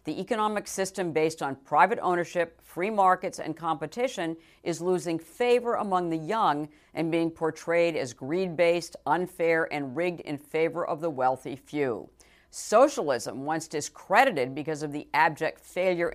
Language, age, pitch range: English, 50-69, 150-190 Hz